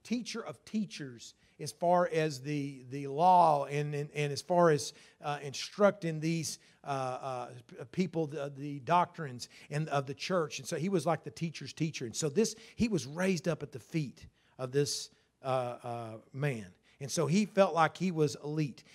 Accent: American